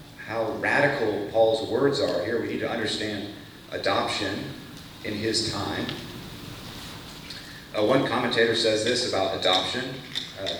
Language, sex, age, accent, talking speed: English, male, 40-59, American, 125 wpm